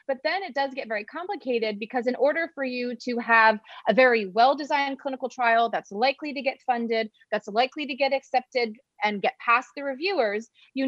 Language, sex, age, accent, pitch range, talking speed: English, female, 30-49, American, 205-270 Hz, 195 wpm